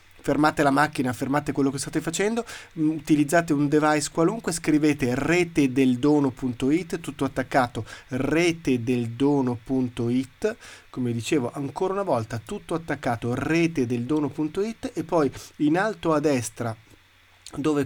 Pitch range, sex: 125-160 Hz, male